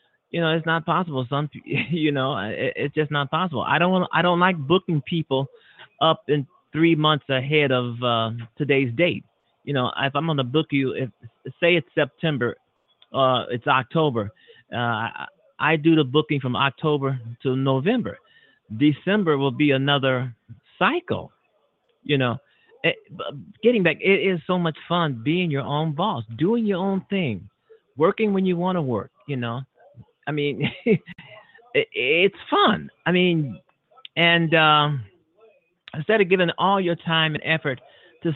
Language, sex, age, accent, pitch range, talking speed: English, male, 30-49, American, 130-175 Hz, 160 wpm